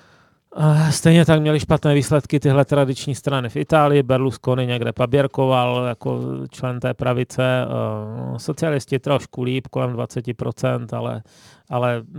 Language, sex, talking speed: Czech, male, 120 wpm